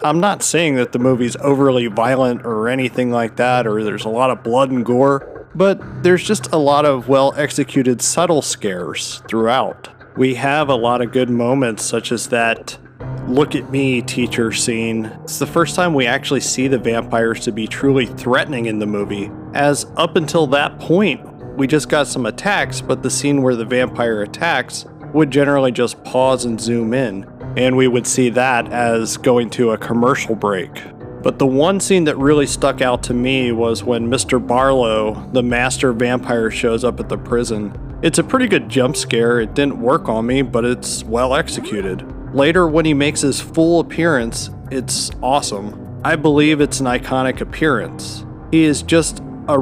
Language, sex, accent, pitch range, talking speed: English, male, American, 120-140 Hz, 180 wpm